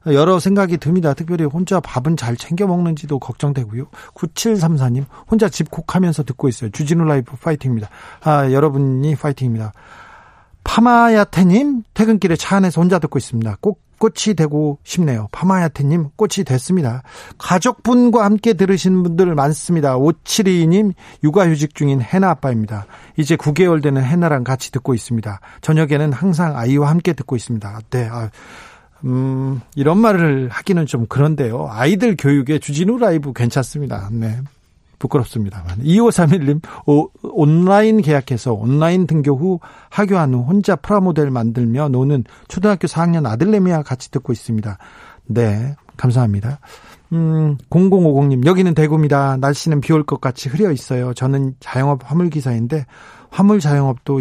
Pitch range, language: 130-180 Hz, Korean